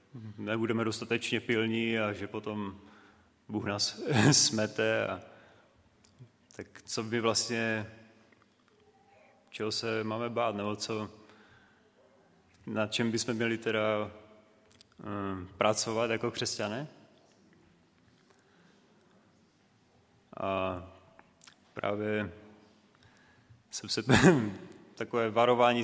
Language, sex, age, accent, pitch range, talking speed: Czech, male, 30-49, native, 105-115 Hz, 80 wpm